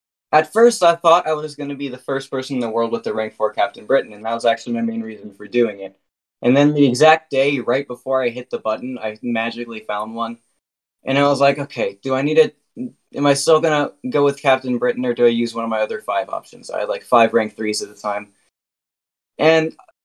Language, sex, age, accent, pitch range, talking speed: English, male, 20-39, American, 110-135 Hz, 250 wpm